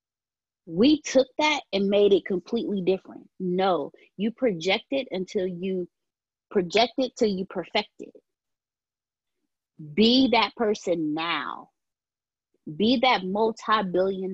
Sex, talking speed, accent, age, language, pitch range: female, 115 wpm, American, 20-39, English, 180-255 Hz